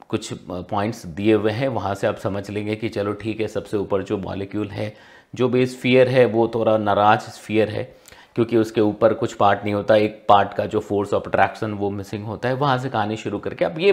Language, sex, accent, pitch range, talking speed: Hindi, male, native, 105-135 Hz, 230 wpm